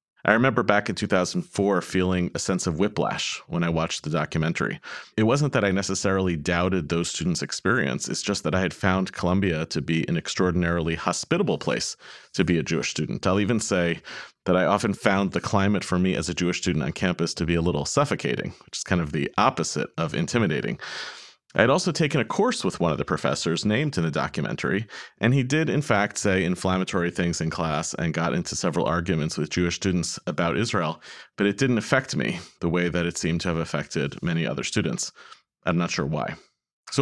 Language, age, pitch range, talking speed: English, 30-49, 85-100 Hz, 205 wpm